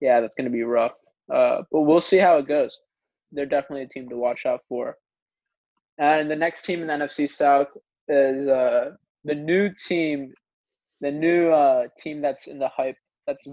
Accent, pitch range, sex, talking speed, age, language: American, 140-165 Hz, male, 190 wpm, 20-39, English